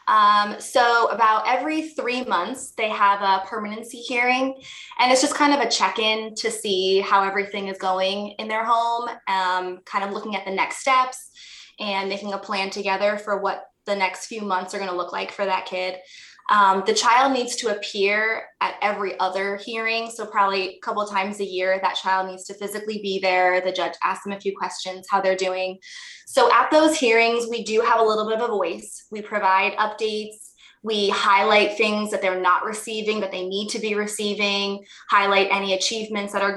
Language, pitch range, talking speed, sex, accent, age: English, 195-230 Hz, 200 wpm, female, American, 20-39